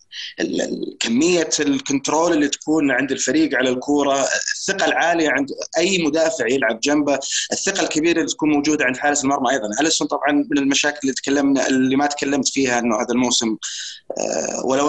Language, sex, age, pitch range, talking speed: Arabic, male, 20-39, 135-180 Hz, 155 wpm